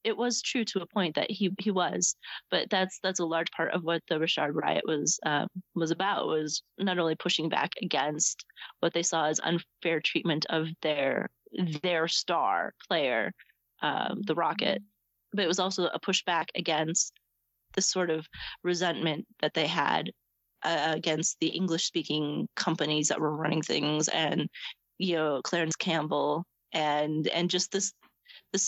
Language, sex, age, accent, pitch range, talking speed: English, female, 30-49, American, 160-195 Hz, 165 wpm